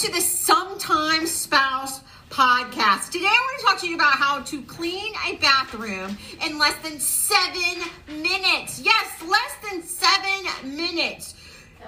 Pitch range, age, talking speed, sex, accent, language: 260-355 Hz, 40-59, 140 wpm, female, American, English